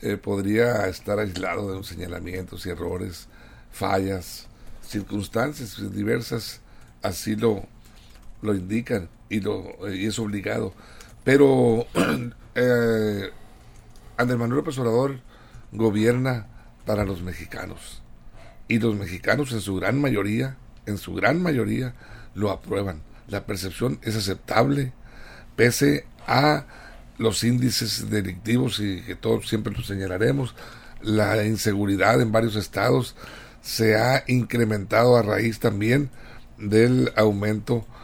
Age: 60-79